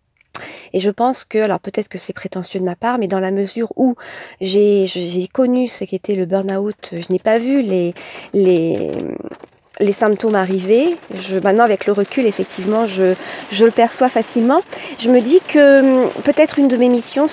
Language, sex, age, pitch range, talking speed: French, female, 40-59, 200-260 Hz, 185 wpm